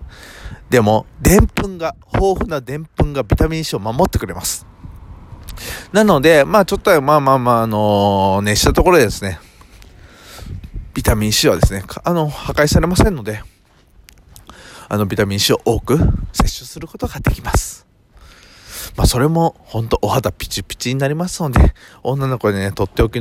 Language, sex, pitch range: Japanese, male, 95-135 Hz